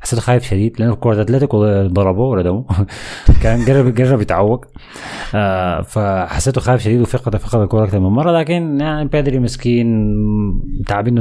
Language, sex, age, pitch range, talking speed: Arabic, male, 30-49, 100-135 Hz, 145 wpm